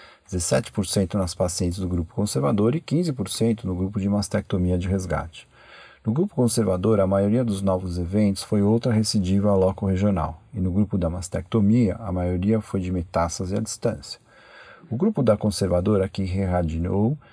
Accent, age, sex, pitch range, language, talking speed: Brazilian, 40-59, male, 90-110 Hz, Portuguese, 150 wpm